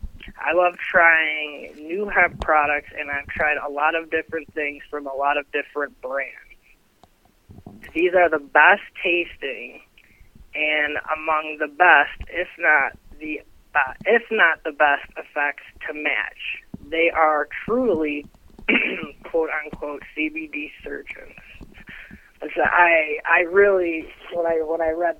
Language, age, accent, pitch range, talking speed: English, 20-39, American, 150-170 Hz, 135 wpm